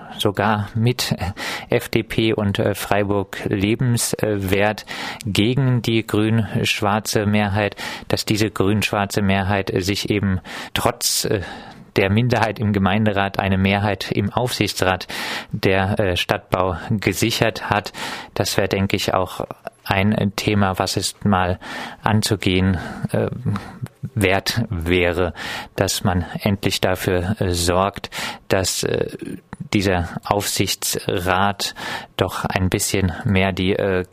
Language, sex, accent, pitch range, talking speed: German, male, German, 95-105 Hz, 100 wpm